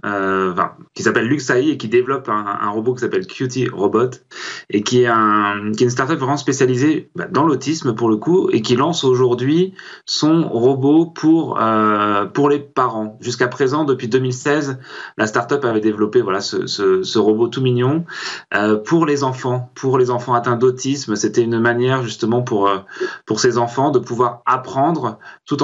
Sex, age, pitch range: male, 20-39, 105-130 Hz